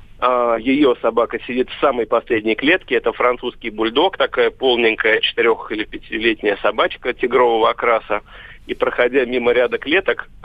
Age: 40-59